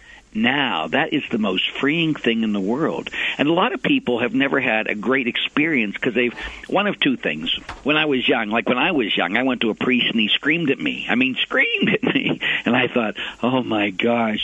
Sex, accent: male, American